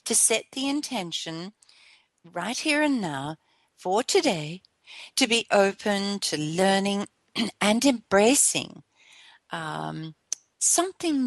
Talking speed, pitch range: 100 wpm, 160-230 Hz